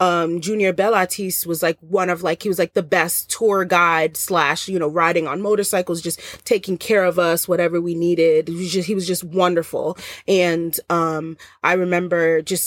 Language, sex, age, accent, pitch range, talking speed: English, female, 30-49, American, 170-215 Hz, 195 wpm